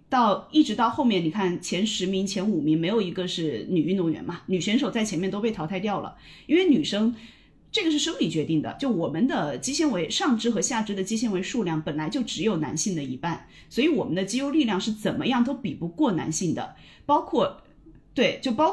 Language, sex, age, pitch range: Chinese, female, 30-49, 170-245 Hz